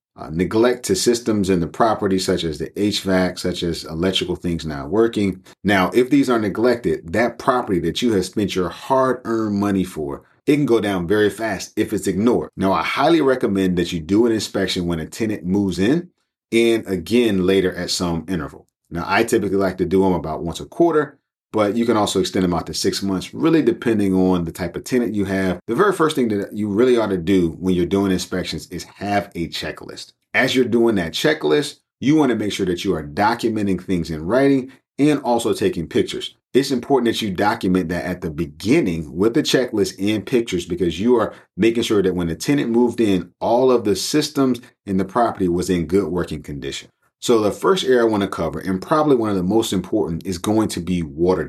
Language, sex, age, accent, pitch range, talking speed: English, male, 40-59, American, 90-115 Hz, 220 wpm